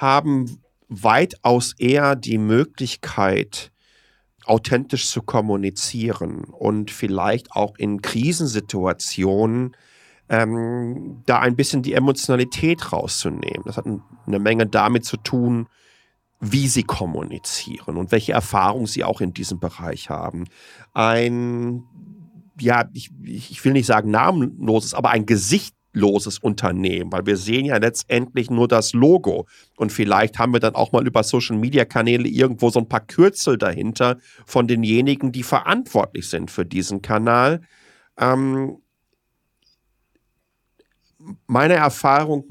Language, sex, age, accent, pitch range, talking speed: German, male, 40-59, German, 110-135 Hz, 125 wpm